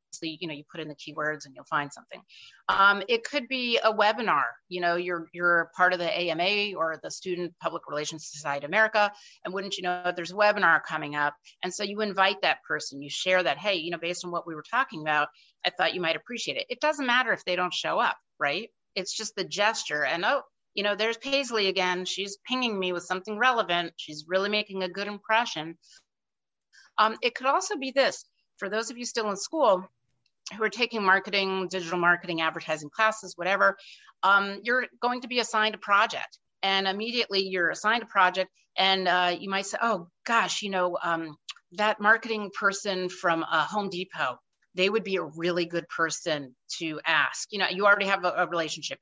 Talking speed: 210 wpm